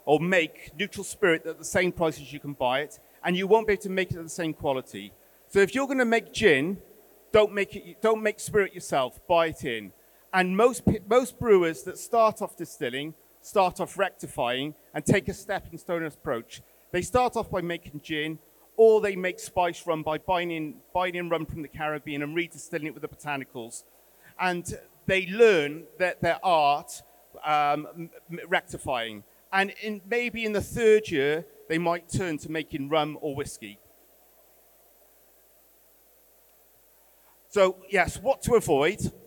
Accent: British